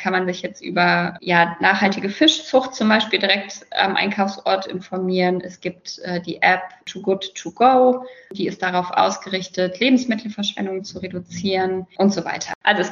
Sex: female